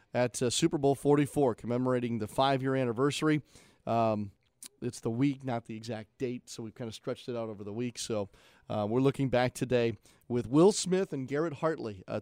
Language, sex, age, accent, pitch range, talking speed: English, male, 40-59, American, 120-145 Hz, 200 wpm